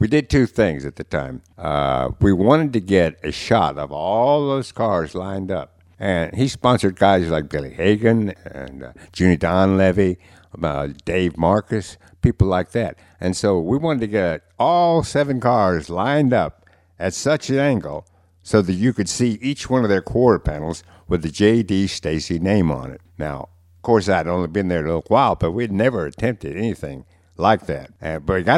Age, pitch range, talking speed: 60-79, 85-115 Hz, 190 wpm